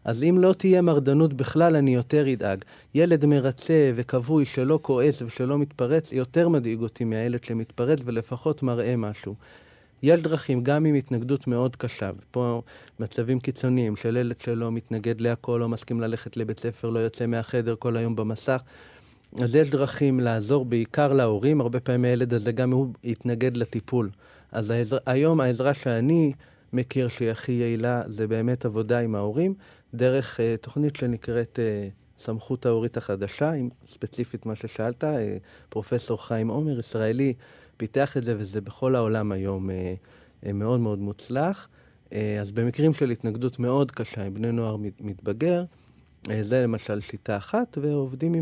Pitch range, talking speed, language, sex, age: 115-140 Hz, 155 wpm, Hebrew, male, 30-49